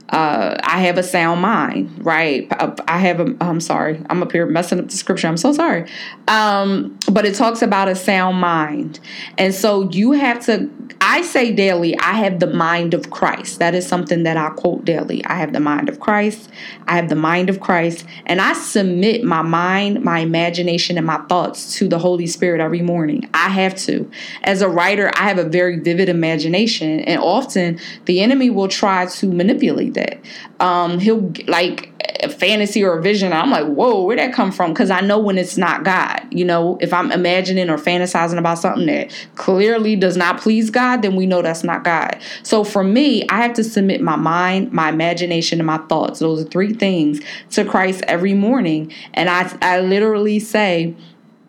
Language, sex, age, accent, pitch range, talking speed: English, female, 20-39, American, 170-210 Hz, 200 wpm